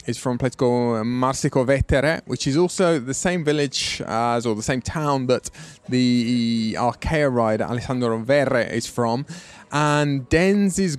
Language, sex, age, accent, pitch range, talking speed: English, male, 20-39, British, 120-155 Hz, 155 wpm